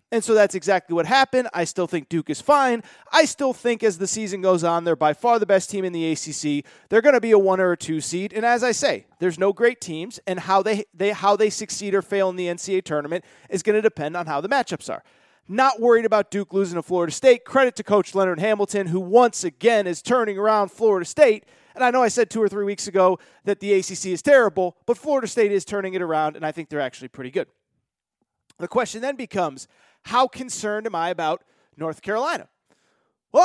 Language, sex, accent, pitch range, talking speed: English, male, American, 185-240 Hz, 230 wpm